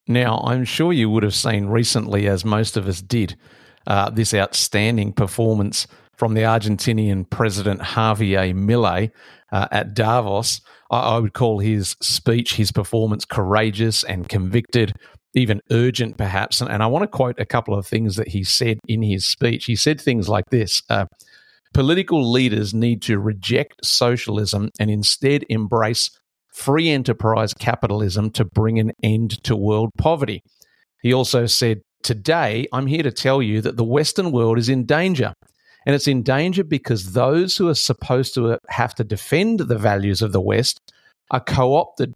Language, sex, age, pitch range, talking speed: English, male, 50-69, 105-130 Hz, 165 wpm